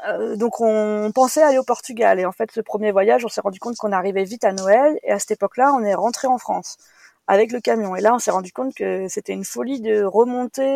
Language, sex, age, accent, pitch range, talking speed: French, female, 20-39, French, 195-245 Hz, 255 wpm